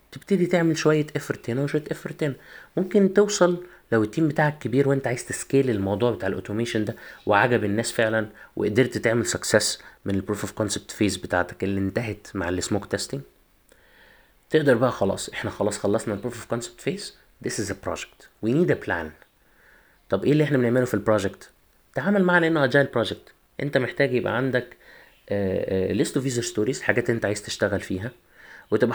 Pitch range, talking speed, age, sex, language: 105-145 Hz, 170 wpm, 30-49, male, Arabic